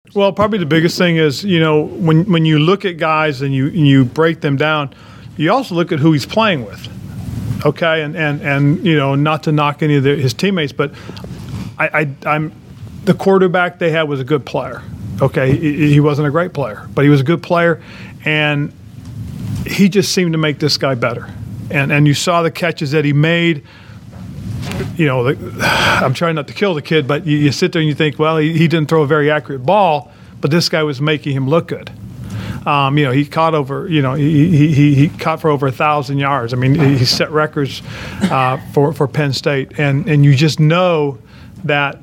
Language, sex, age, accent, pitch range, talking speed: English, male, 40-59, American, 140-160 Hz, 215 wpm